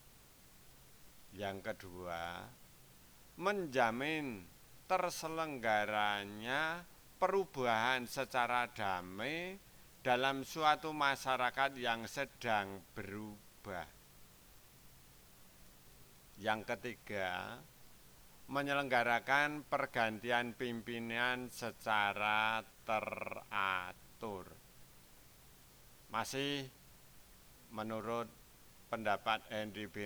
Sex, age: male, 50-69